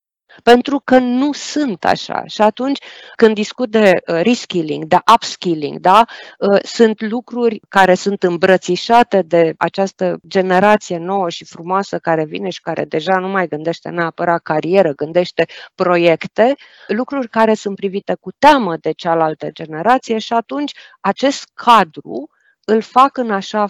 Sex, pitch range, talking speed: female, 180-235 Hz, 135 wpm